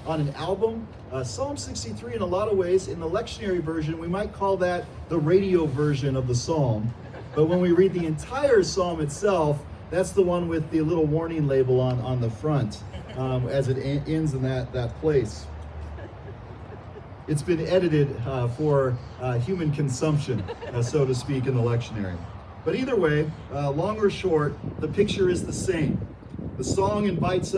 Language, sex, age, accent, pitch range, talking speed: English, male, 40-59, American, 120-165 Hz, 180 wpm